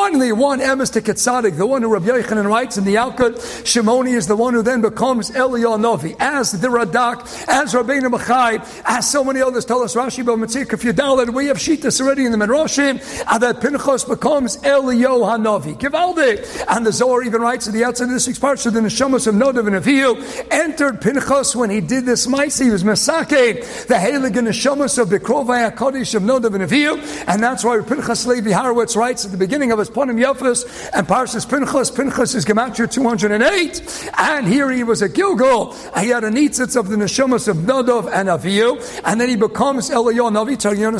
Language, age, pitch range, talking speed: English, 50-69, 220-265 Hz, 195 wpm